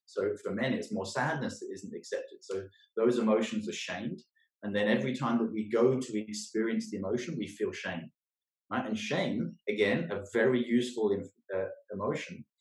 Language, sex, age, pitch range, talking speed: English, male, 30-49, 105-140 Hz, 180 wpm